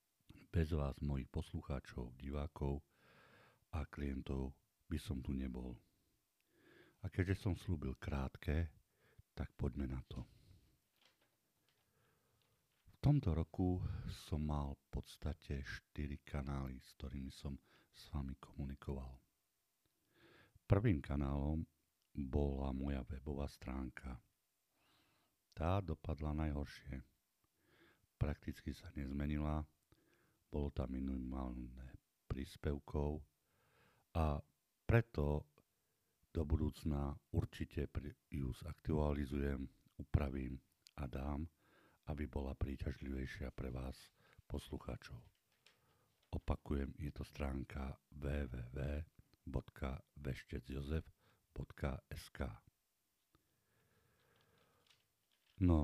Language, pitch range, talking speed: Slovak, 70-80 Hz, 80 wpm